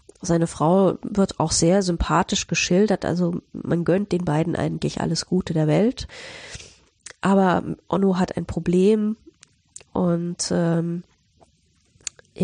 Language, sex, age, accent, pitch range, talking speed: German, female, 20-39, German, 170-210 Hz, 115 wpm